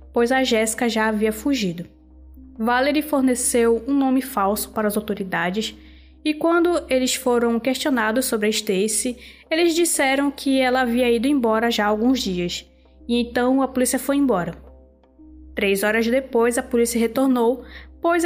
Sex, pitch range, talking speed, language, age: female, 210-260 Hz, 150 wpm, Portuguese, 10-29